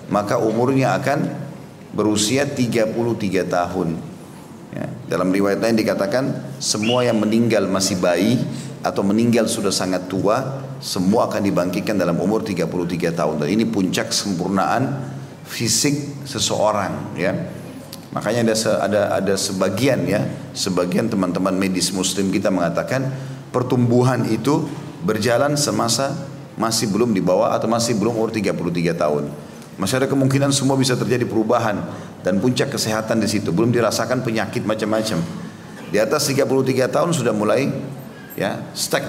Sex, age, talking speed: male, 40-59, 130 wpm